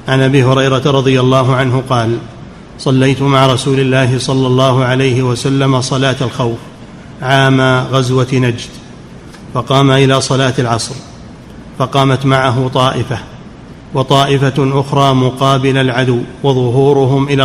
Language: Arabic